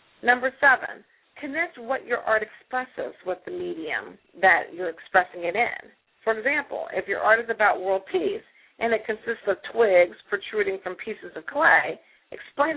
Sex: female